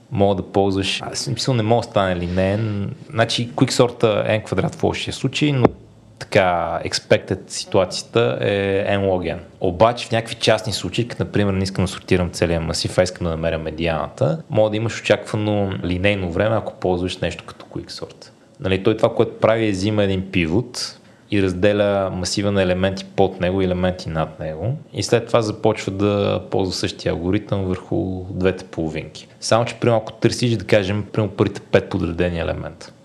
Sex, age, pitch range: male, 30-49, 95-110 Hz